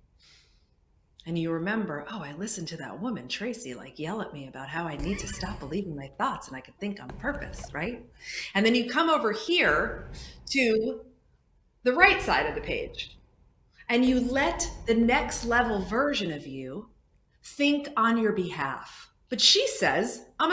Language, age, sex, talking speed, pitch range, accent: English, 40-59, female, 175 wpm, 180-270 Hz, American